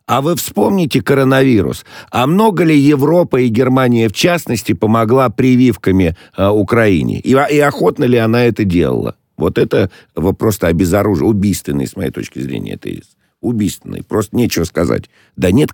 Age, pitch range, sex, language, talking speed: 50-69, 90-125 Hz, male, Russian, 155 wpm